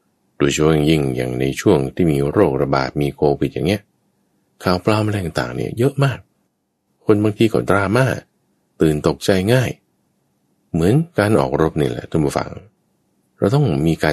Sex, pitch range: male, 70-85 Hz